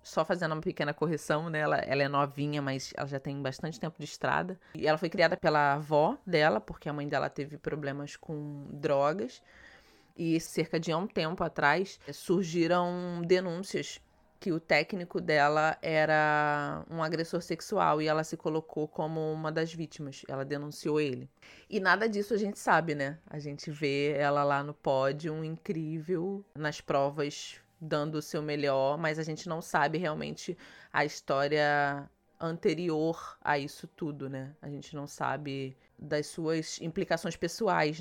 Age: 20-39